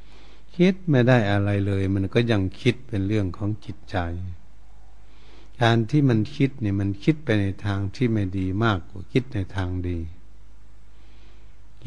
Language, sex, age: Thai, male, 60-79